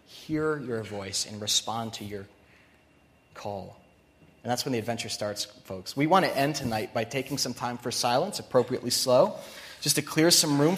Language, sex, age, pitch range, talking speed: English, male, 30-49, 135-185 Hz, 185 wpm